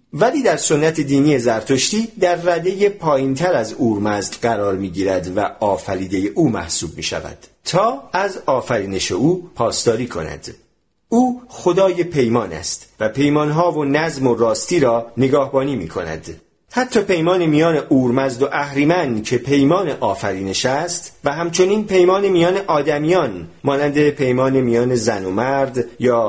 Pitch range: 120-175 Hz